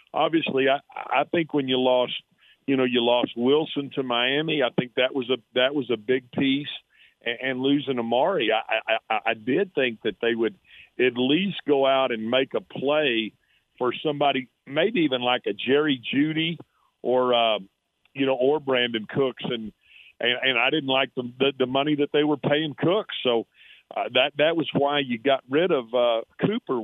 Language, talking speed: English, 190 wpm